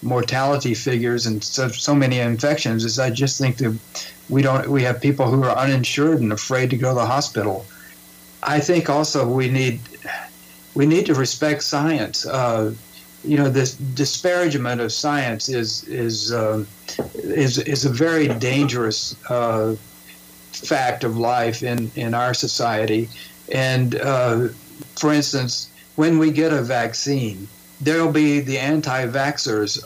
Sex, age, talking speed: male, 60-79, 145 wpm